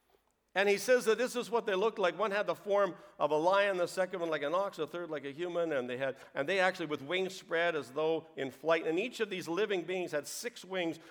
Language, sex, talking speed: English, male, 270 wpm